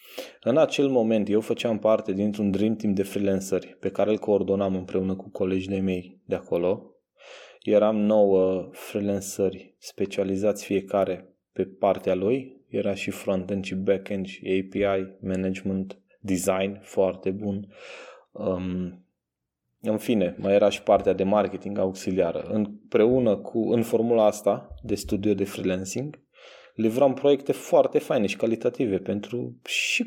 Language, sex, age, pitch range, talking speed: Romanian, male, 20-39, 95-115 Hz, 130 wpm